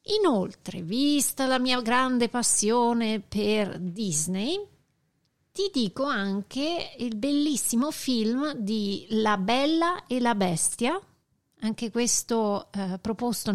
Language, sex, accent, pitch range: Italian, female, native, 190-250 Hz